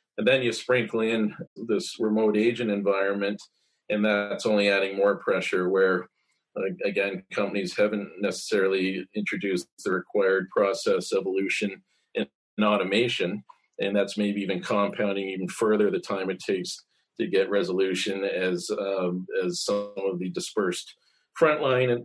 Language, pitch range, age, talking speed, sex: English, 100-110 Hz, 40-59, 135 wpm, male